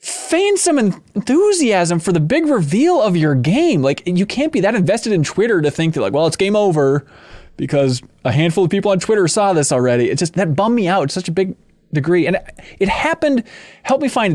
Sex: male